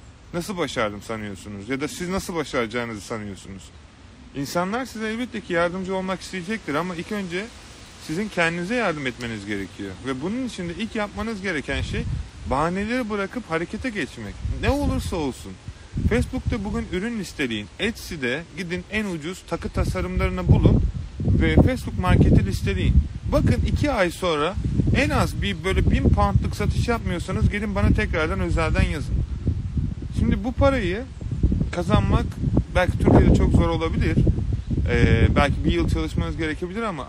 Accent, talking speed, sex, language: native, 140 wpm, male, Turkish